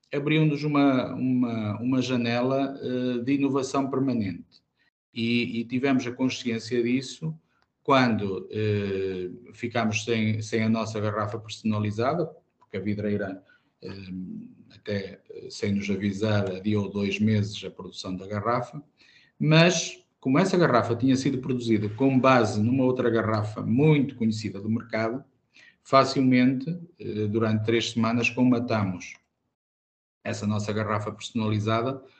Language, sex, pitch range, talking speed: Portuguese, male, 105-130 Hz, 125 wpm